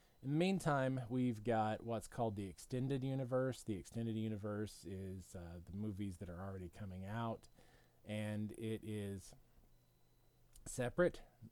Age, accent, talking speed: 20-39, American, 135 wpm